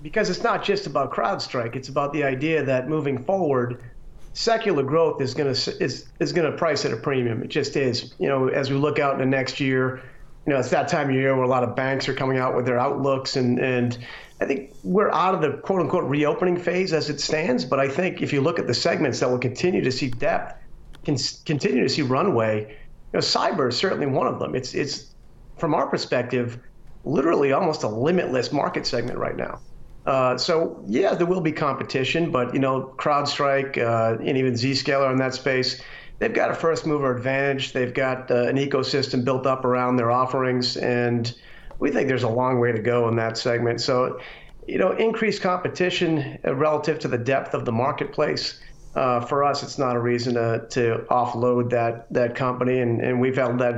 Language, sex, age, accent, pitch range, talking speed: English, male, 40-59, American, 125-145 Hz, 210 wpm